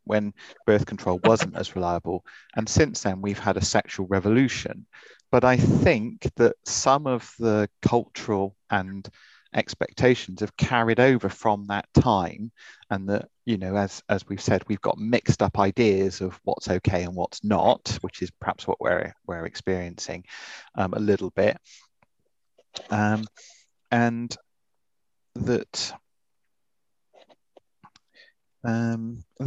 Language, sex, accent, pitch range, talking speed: English, male, British, 95-115 Hz, 130 wpm